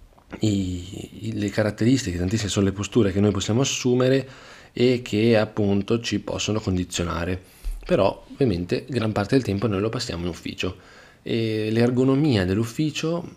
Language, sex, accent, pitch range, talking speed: Italian, male, native, 90-115 Hz, 135 wpm